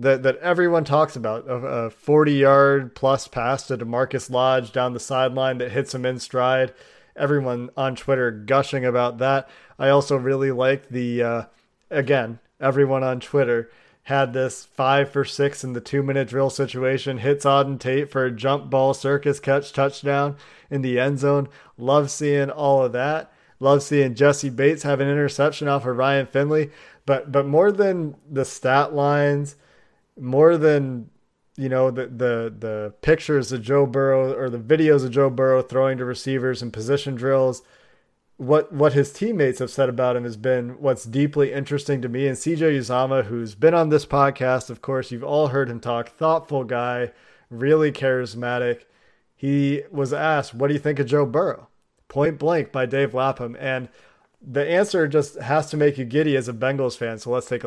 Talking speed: 180 wpm